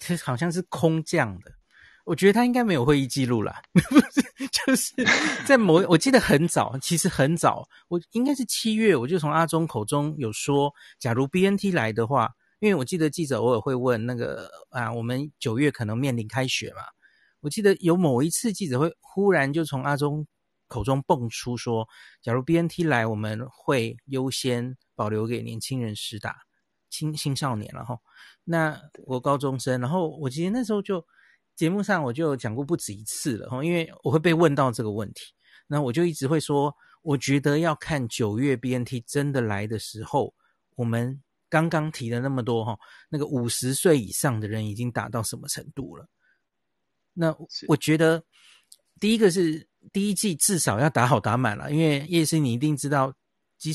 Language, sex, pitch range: Chinese, male, 125-170 Hz